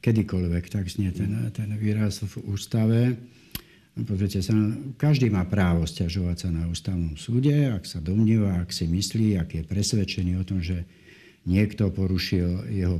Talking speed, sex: 150 wpm, male